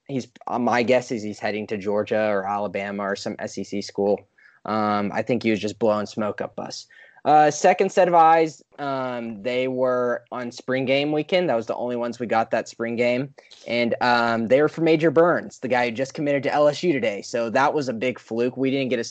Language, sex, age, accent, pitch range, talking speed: English, male, 20-39, American, 105-130 Hz, 225 wpm